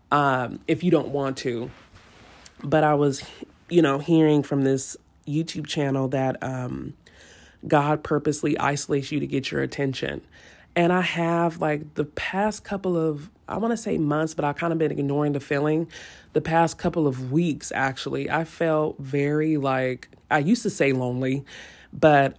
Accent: American